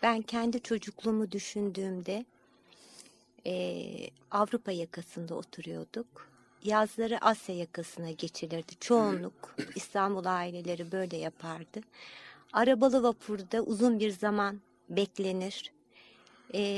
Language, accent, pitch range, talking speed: Turkish, native, 175-230 Hz, 85 wpm